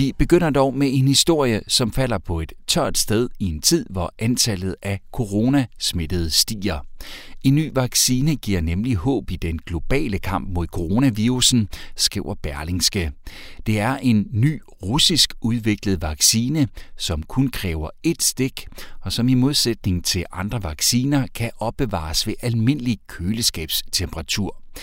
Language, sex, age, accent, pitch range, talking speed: Danish, male, 60-79, native, 85-120 Hz, 145 wpm